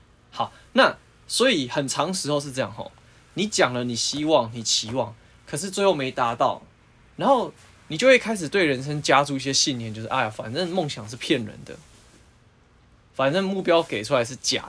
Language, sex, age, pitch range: Chinese, male, 20-39, 115-155 Hz